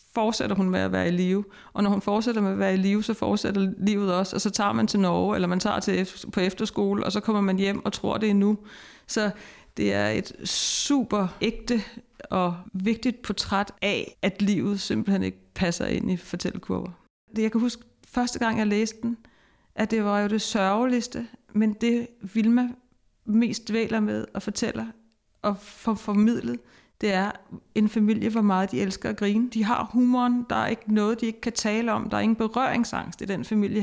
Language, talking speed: Danish, 205 wpm